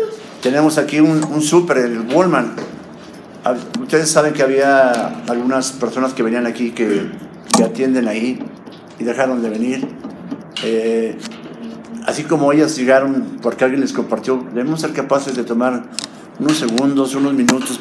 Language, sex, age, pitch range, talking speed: Spanish, male, 50-69, 115-140 Hz, 140 wpm